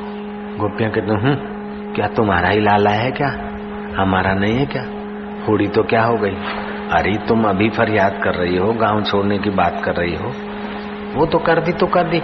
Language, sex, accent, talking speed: Hindi, male, native, 190 wpm